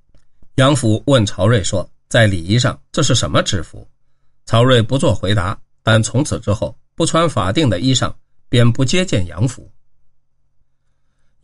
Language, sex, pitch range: Chinese, male, 110-140 Hz